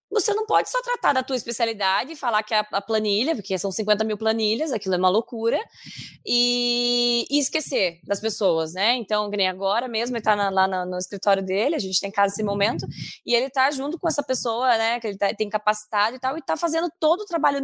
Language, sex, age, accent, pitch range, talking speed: Portuguese, female, 20-39, Brazilian, 205-290 Hz, 230 wpm